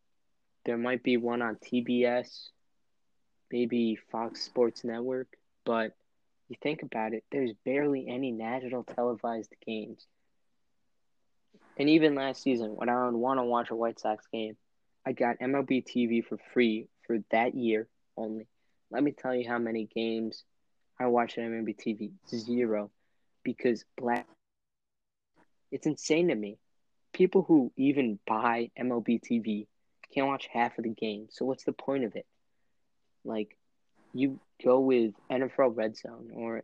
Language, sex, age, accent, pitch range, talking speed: English, male, 20-39, American, 115-130 Hz, 145 wpm